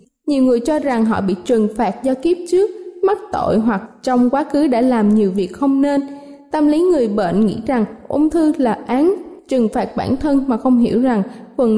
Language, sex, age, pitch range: Thai, female, 20-39, 225-285 Hz